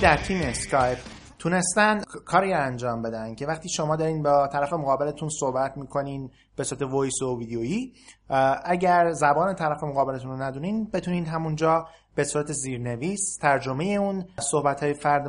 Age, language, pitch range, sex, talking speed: 30-49, Persian, 130-165 Hz, male, 150 wpm